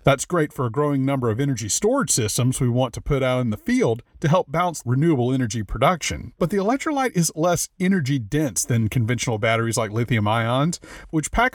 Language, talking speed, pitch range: English, 205 wpm, 120-165 Hz